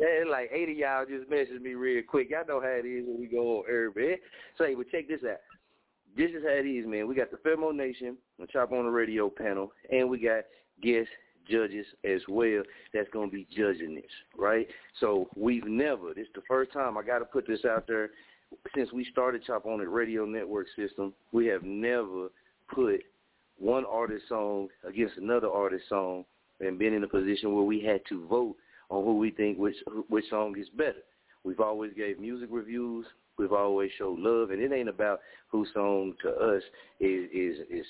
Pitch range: 100-125 Hz